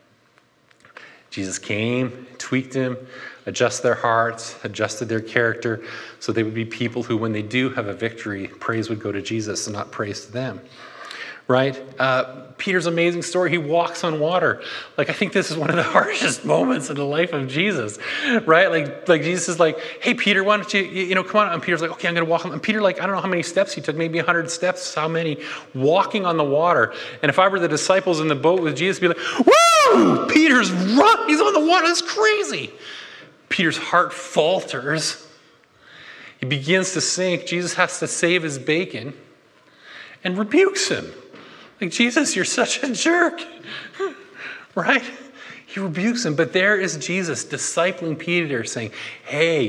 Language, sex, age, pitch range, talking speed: English, male, 30-49, 120-190 Hz, 190 wpm